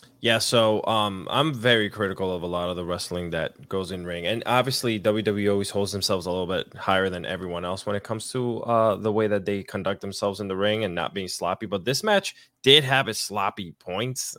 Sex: male